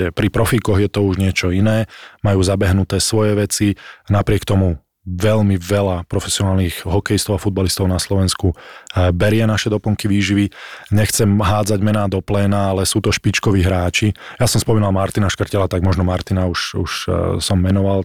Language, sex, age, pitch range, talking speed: Slovak, male, 20-39, 95-105 Hz, 155 wpm